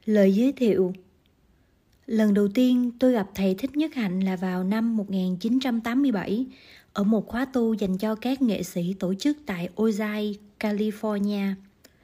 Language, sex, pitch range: Korean, female, 195-245 Hz